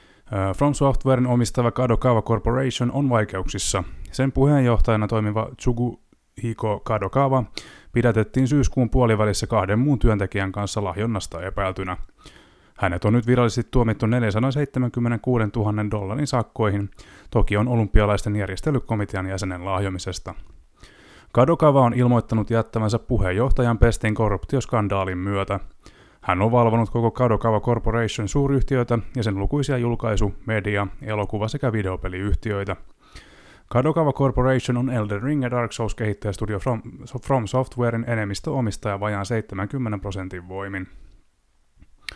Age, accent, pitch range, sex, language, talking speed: 20-39, native, 100-125 Hz, male, Finnish, 110 wpm